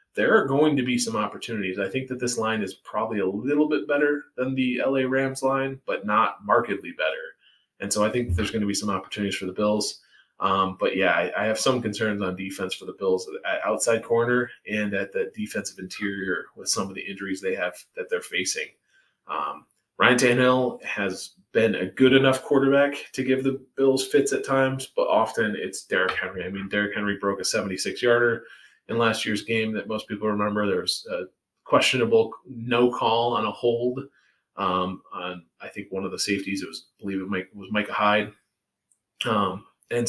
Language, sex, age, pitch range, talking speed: English, male, 20-39, 100-135 Hz, 200 wpm